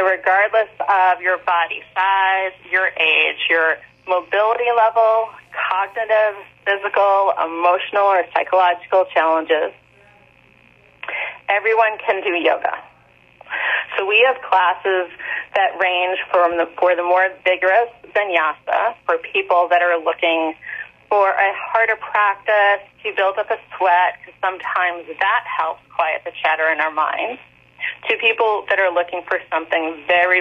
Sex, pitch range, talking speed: female, 170-210 Hz, 130 wpm